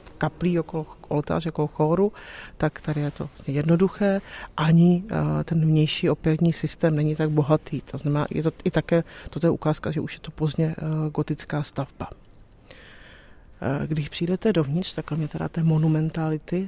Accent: native